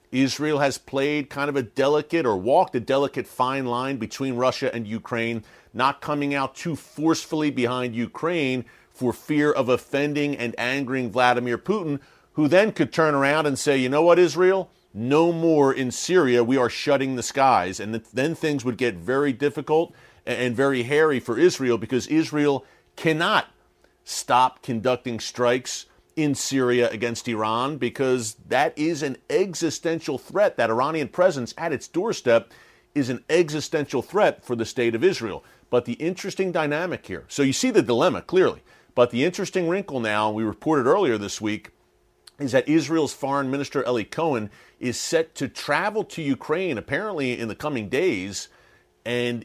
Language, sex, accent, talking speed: English, male, American, 165 wpm